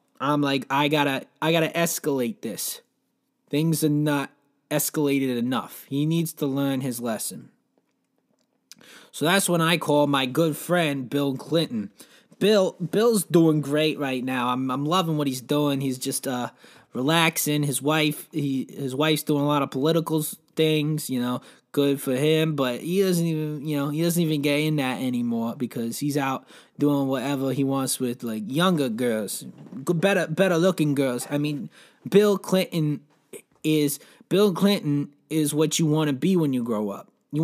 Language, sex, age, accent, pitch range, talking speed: English, male, 20-39, American, 135-165 Hz, 170 wpm